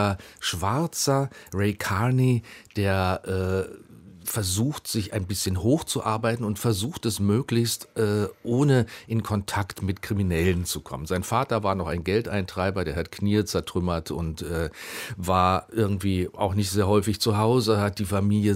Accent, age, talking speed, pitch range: German, 40-59, 145 wpm, 95-115 Hz